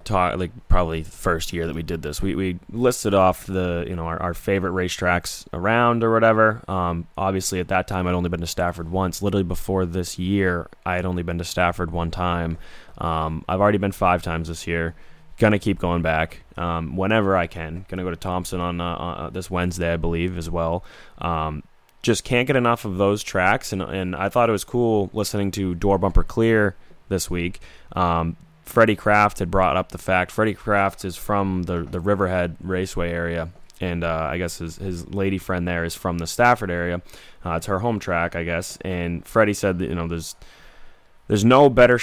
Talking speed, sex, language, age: 205 wpm, male, English, 20-39